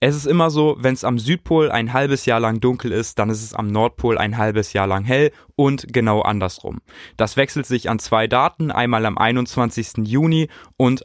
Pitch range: 110-130 Hz